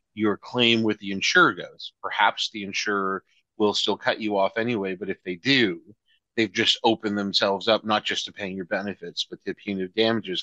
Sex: male